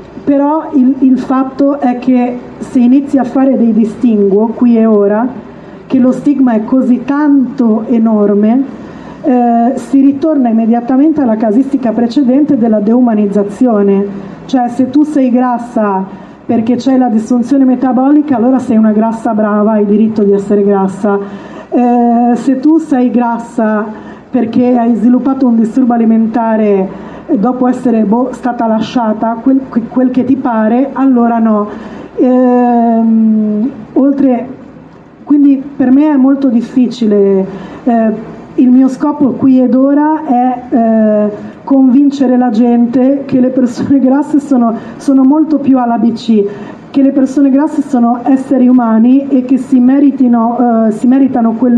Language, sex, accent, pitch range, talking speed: Italian, female, native, 225-265 Hz, 140 wpm